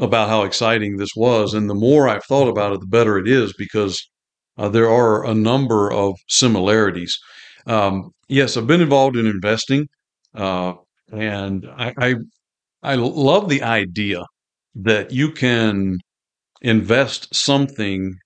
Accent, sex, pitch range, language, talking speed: American, male, 100-120 Hz, English, 145 wpm